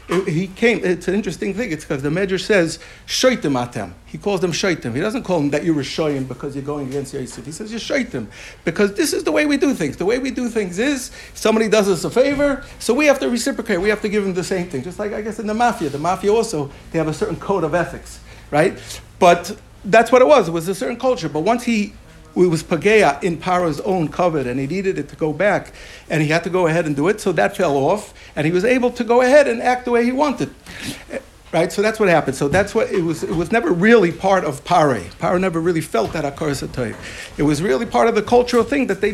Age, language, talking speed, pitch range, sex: 60-79, English, 255 wpm, 150-215 Hz, male